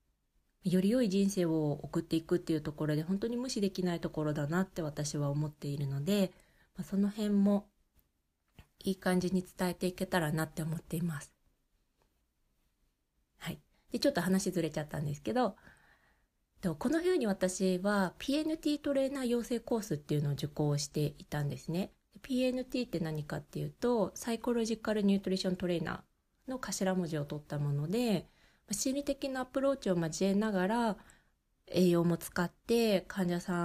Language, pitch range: Japanese, 150-200 Hz